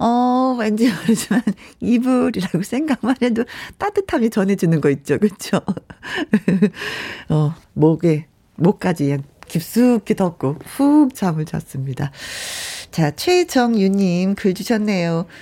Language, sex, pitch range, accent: Korean, female, 165-240 Hz, native